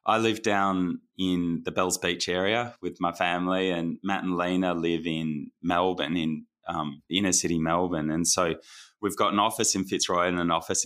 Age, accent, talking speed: 20-39, Australian, 190 wpm